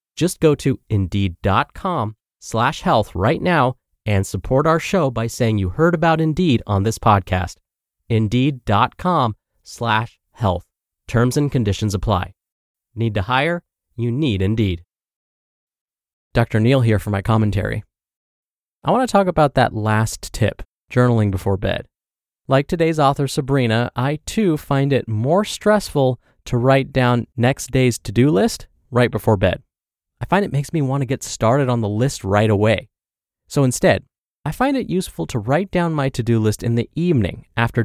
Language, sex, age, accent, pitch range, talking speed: English, male, 20-39, American, 110-150 Hz, 160 wpm